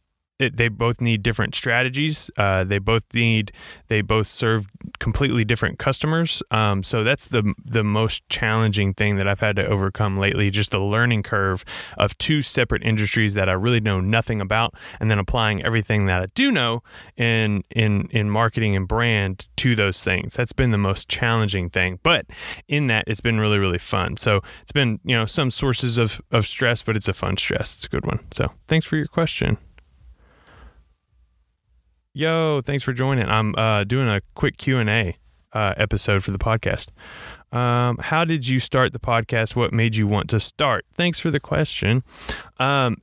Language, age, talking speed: English, 20-39, 185 wpm